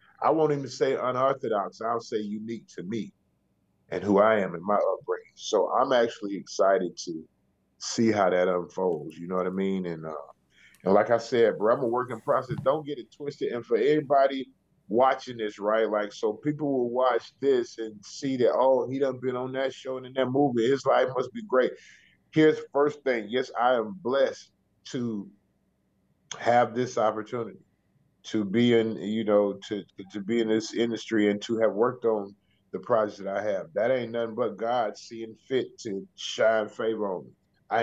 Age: 30-49